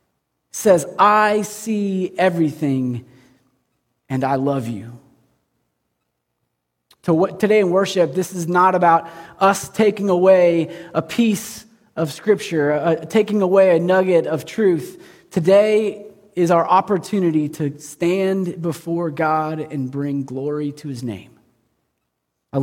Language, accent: English, American